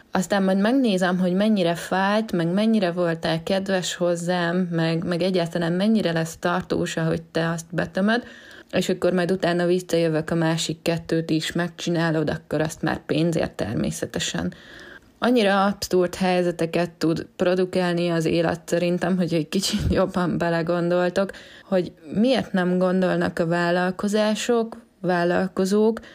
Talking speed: 130 wpm